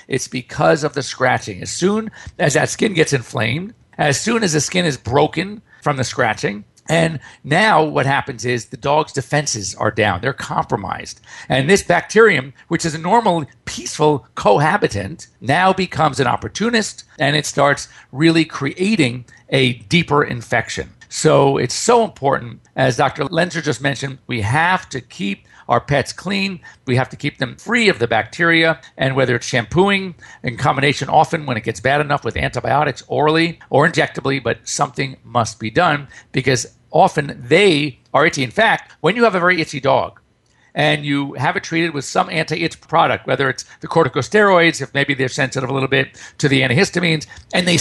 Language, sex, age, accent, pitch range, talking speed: English, male, 50-69, American, 130-170 Hz, 175 wpm